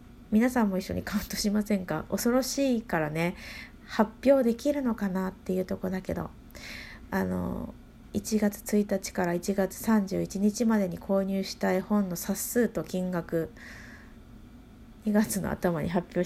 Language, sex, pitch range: Japanese, female, 185-255 Hz